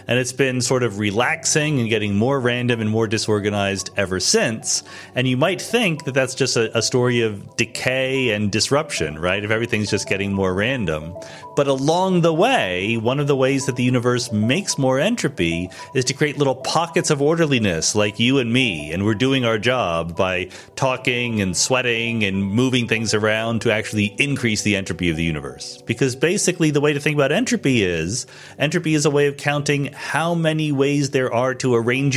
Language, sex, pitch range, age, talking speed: English, male, 110-145 Hz, 30-49, 195 wpm